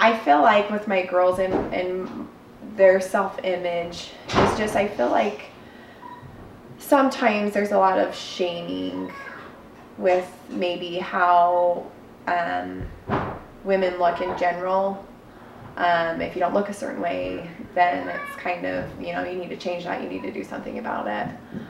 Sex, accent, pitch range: female, American, 135-195 Hz